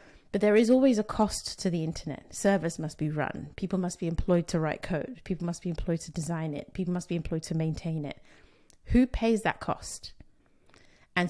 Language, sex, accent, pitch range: English, female, British, 170-205 Hz